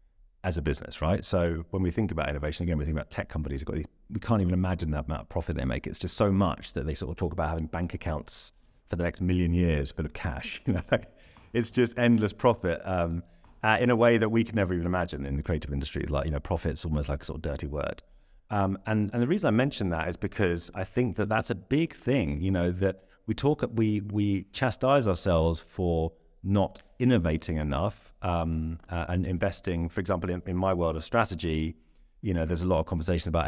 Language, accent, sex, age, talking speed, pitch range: English, British, male, 30-49, 235 wpm, 80-95 Hz